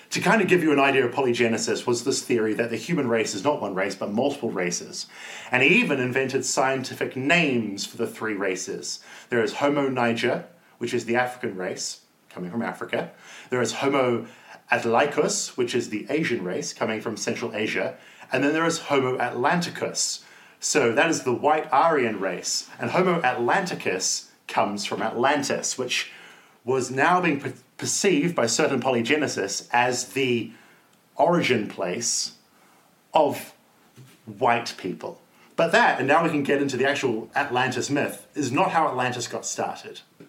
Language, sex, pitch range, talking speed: English, male, 120-145 Hz, 165 wpm